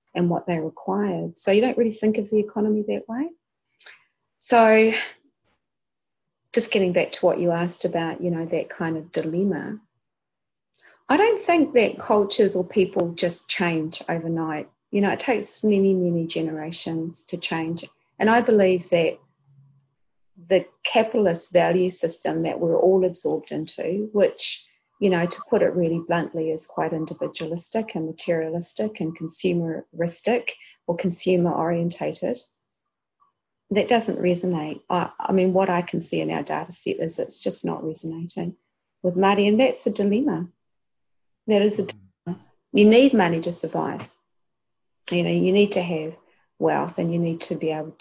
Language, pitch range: English, 165-205 Hz